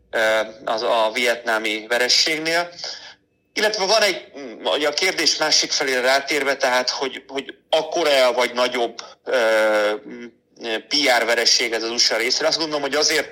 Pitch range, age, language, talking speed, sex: 115-135 Hz, 30-49, Hungarian, 125 wpm, male